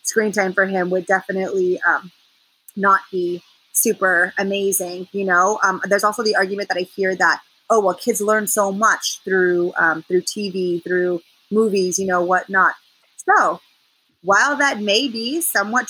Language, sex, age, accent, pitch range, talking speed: English, female, 30-49, American, 180-220 Hz, 160 wpm